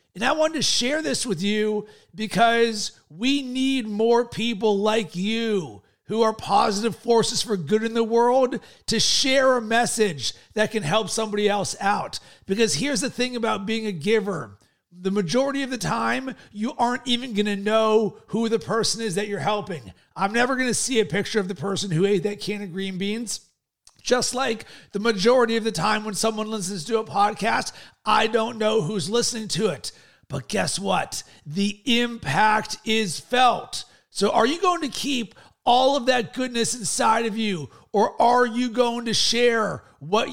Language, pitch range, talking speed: English, 205-240 Hz, 185 wpm